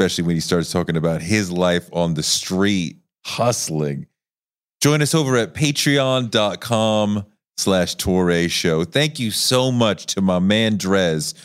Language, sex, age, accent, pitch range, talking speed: English, male, 30-49, American, 100-125 Hz, 140 wpm